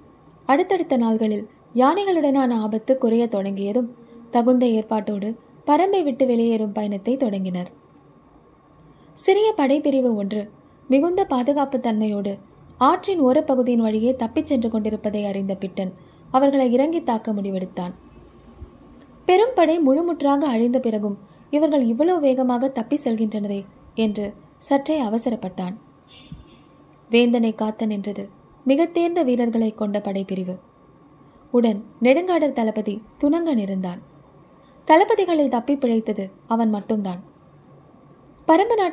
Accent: native